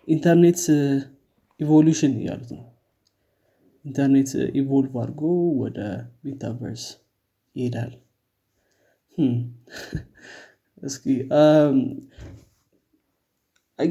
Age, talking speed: 20-39, 60 wpm